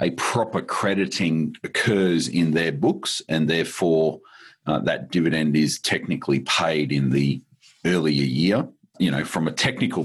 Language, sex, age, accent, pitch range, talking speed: English, male, 40-59, Australian, 75-95 Hz, 145 wpm